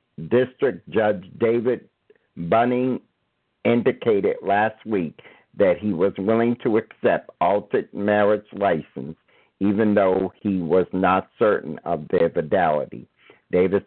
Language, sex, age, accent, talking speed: English, male, 60-79, American, 110 wpm